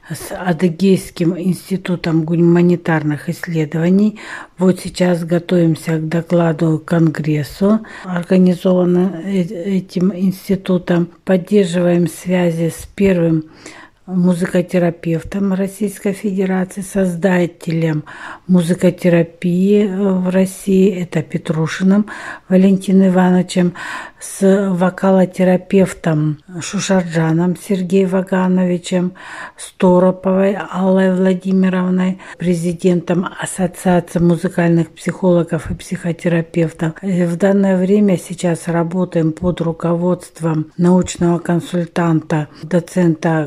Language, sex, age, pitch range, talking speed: Russian, female, 60-79, 170-190 Hz, 75 wpm